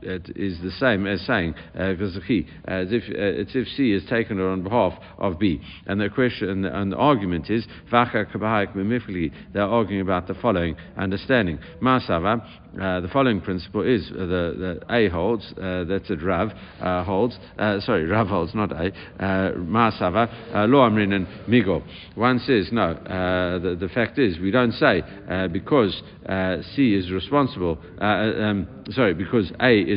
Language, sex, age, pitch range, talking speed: English, male, 50-69, 90-110 Hz, 165 wpm